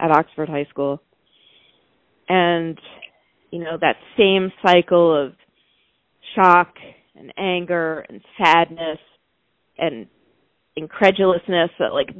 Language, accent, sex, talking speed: English, American, female, 100 wpm